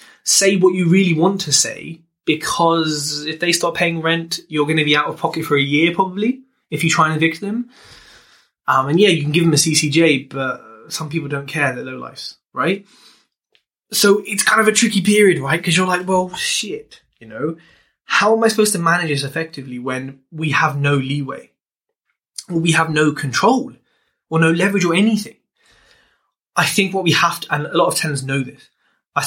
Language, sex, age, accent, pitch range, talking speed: English, male, 20-39, British, 150-195 Hz, 205 wpm